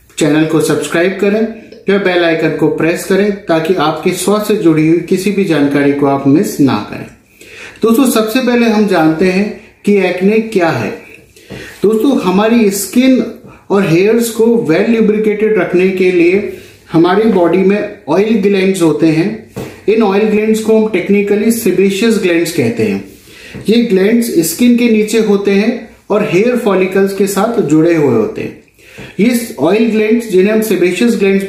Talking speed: 90 wpm